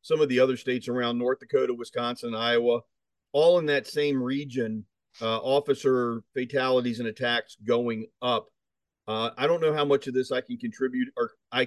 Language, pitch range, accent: English, 120-140 Hz, American